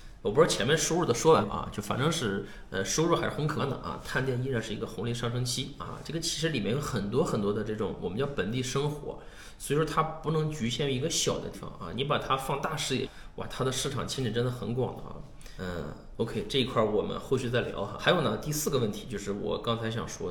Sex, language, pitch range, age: male, Chinese, 110-135 Hz, 20-39